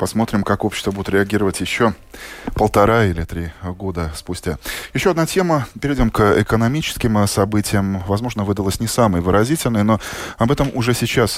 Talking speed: 150 wpm